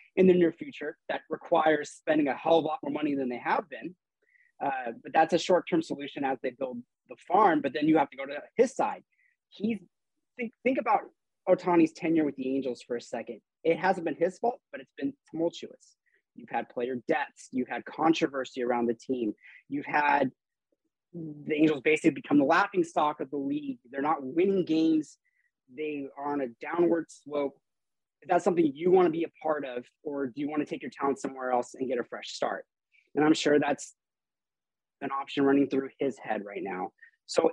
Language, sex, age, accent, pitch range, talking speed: English, male, 20-39, American, 135-185 Hz, 205 wpm